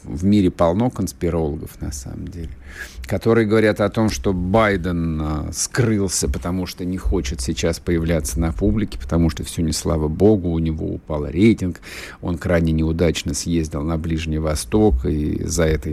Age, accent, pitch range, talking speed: 50-69, native, 85-125 Hz, 160 wpm